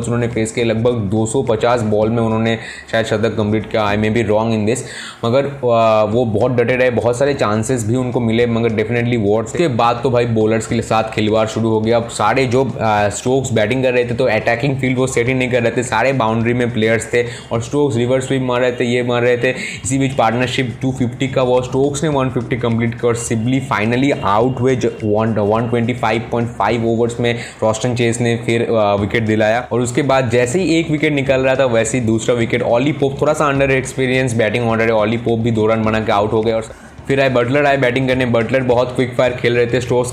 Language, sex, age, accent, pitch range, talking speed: Hindi, male, 20-39, native, 115-130 Hz, 150 wpm